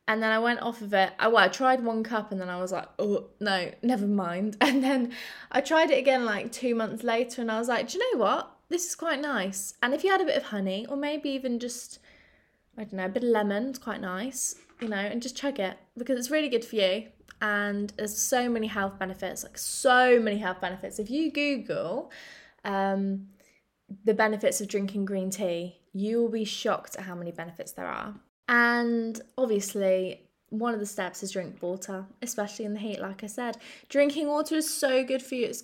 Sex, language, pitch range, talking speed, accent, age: female, English, 200-260 Hz, 220 wpm, British, 20-39